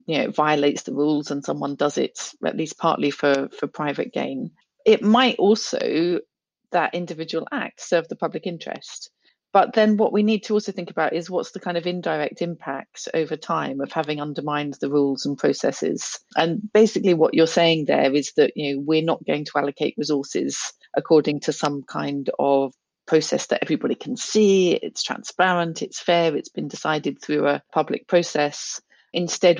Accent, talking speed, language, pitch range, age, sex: British, 180 wpm, English, 150-185 Hz, 40-59, female